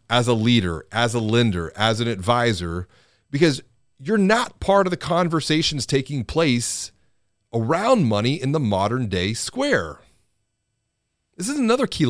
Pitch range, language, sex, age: 105-155 Hz, English, male, 40-59